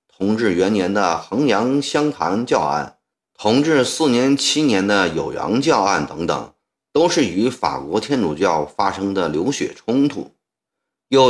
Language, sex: Chinese, male